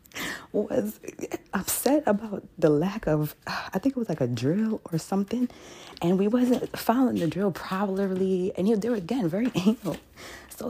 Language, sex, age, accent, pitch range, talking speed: English, female, 30-49, American, 170-250 Hz, 170 wpm